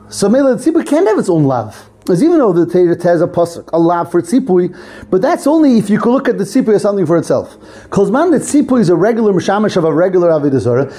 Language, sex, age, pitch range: English, male, 30-49, 160-240 Hz